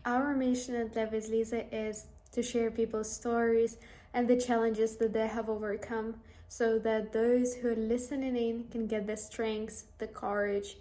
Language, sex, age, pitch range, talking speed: English, female, 10-29, 220-235 Hz, 165 wpm